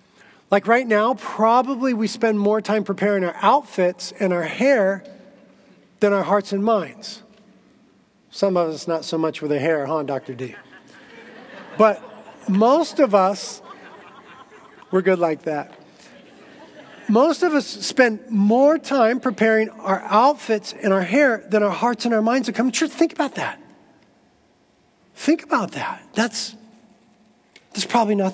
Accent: American